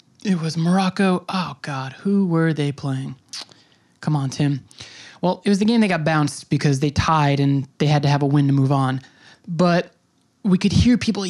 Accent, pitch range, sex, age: American, 150-180 Hz, male, 20-39